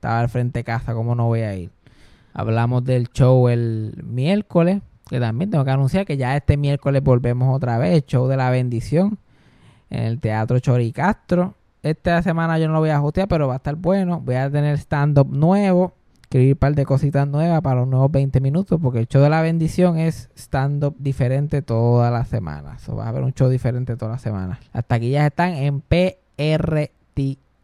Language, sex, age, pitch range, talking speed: Spanish, male, 20-39, 120-155 Hz, 195 wpm